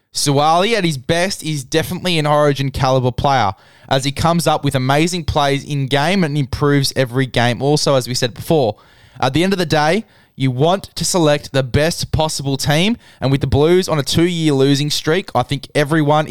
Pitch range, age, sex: 125-150 Hz, 10-29, male